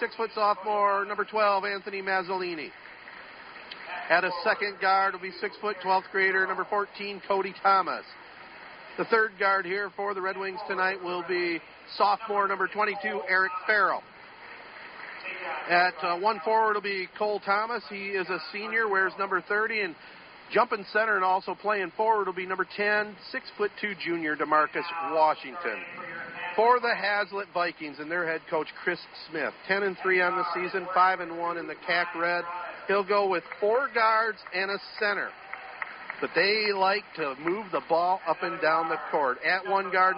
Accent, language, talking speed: American, English, 165 wpm